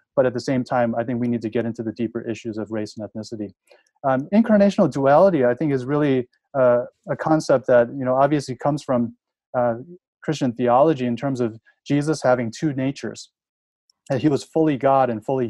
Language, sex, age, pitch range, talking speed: English, male, 30-49, 120-145 Hz, 200 wpm